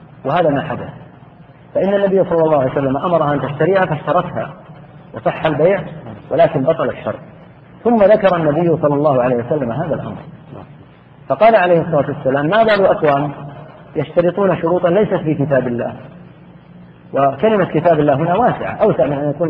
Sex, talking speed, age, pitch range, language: male, 150 wpm, 40-59, 145-170 Hz, Arabic